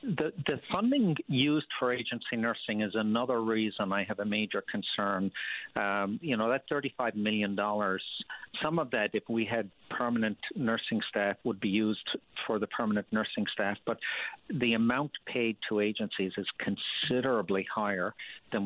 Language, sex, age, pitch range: English, male, 50-69, 100-115 Hz